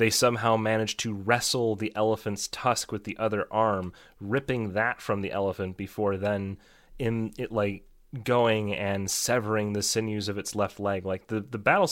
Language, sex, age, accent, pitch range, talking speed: English, male, 30-49, American, 100-130 Hz, 175 wpm